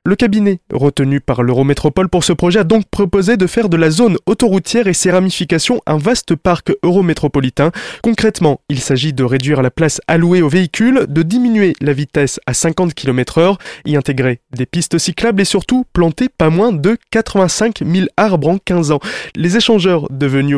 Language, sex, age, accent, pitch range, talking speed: French, male, 20-39, French, 145-205 Hz, 180 wpm